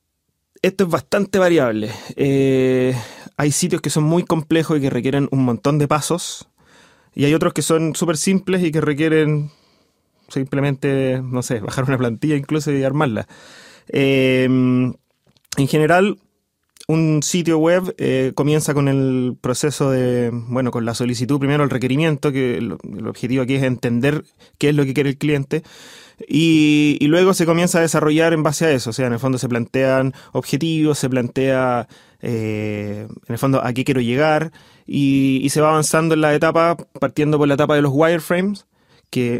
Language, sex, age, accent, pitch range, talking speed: Spanish, male, 20-39, Argentinian, 130-160 Hz, 175 wpm